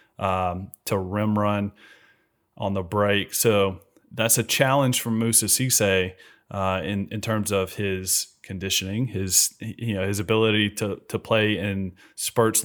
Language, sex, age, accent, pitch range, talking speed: English, male, 30-49, American, 95-110 Hz, 145 wpm